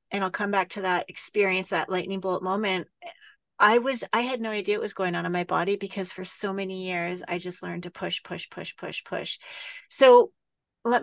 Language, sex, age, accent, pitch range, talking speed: English, female, 30-49, American, 180-225 Hz, 220 wpm